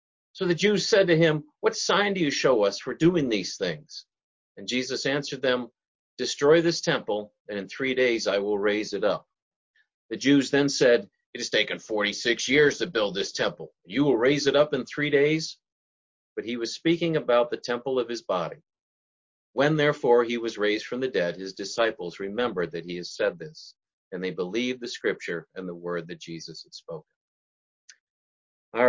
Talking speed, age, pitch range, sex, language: 190 wpm, 40-59, 105-155 Hz, male, English